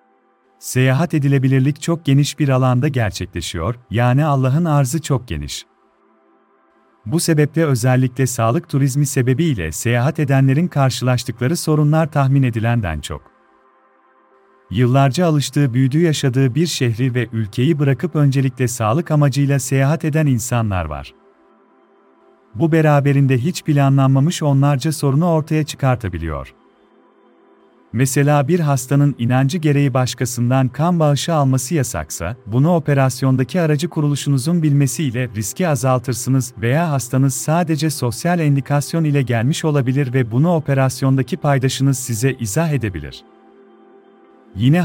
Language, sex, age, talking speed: Turkish, male, 40-59, 110 wpm